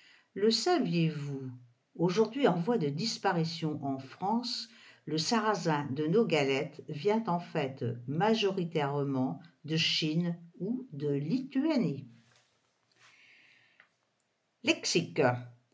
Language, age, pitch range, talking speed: English, 60-79, 145-220 Hz, 90 wpm